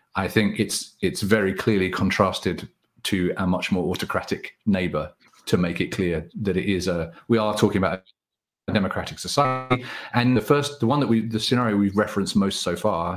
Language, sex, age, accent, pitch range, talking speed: English, male, 40-59, British, 90-110 Hz, 195 wpm